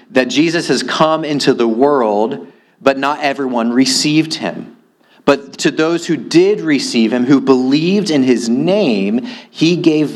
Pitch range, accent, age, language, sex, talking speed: 105-145 Hz, American, 30-49, English, male, 155 wpm